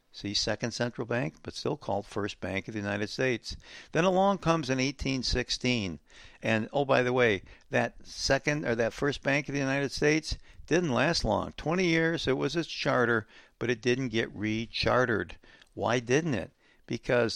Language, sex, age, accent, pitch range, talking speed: English, male, 60-79, American, 115-150 Hz, 175 wpm